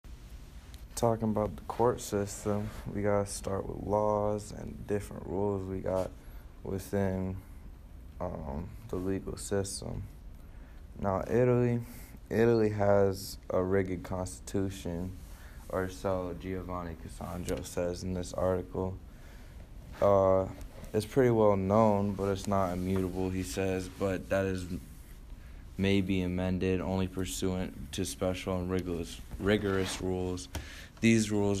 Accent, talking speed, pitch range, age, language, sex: American, 120 wpm, 85-95 Hz, 20-39, English, male